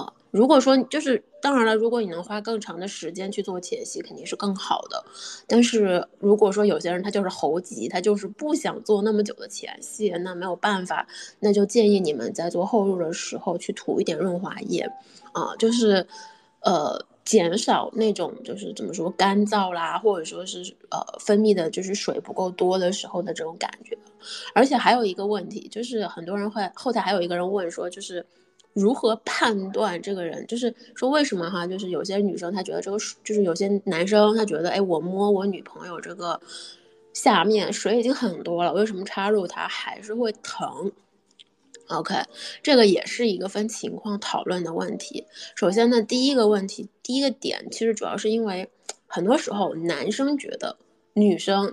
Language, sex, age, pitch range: Chinese, female, 20-39, 185-230 Hz